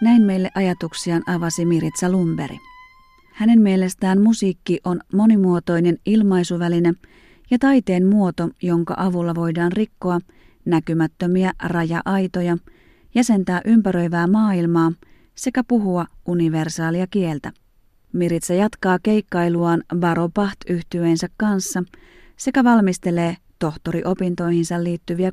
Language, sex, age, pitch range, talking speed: Finnish, female, 30-49, 170-195 Hz, 90 wpm